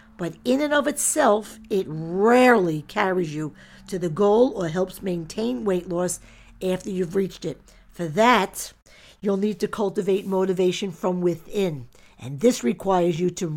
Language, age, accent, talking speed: English, 50-69, American, 155 wpm